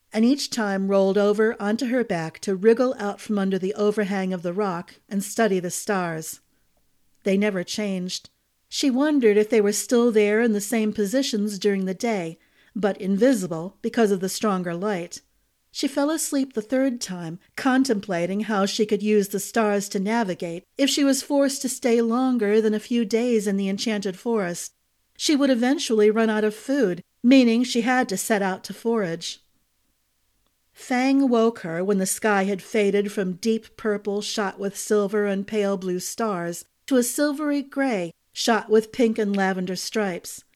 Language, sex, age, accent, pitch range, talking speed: English, female, 40-59, American, 195-235 Hz, 175 wpm